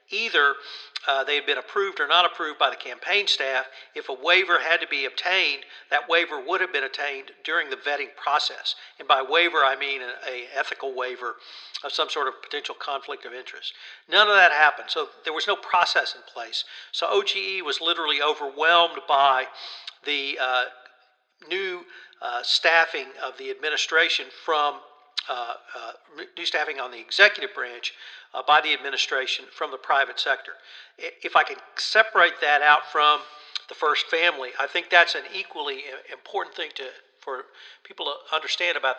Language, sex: English, male